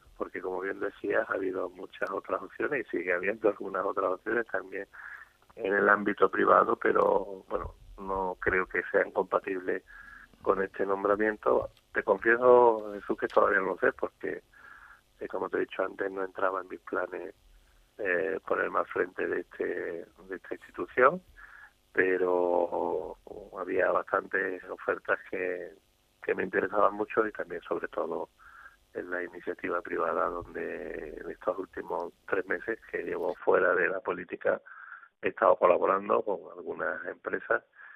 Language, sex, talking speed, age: Spanish, male, 150 wpm, 30-49